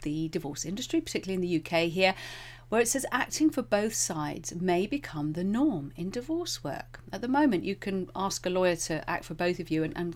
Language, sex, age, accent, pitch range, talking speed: English, female, 40-59, British, 155-200 Hz, 225 wpm